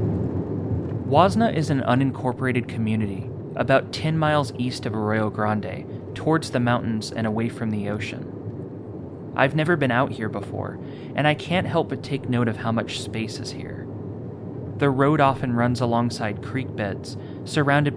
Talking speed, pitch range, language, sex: 155 wpm, 105-130 Hz, English, male